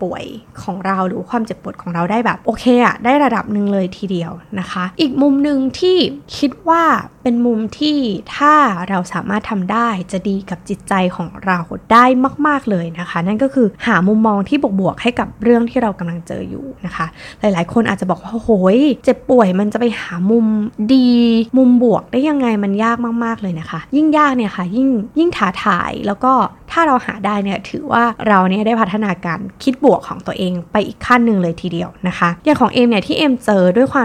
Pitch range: 185-250 Hz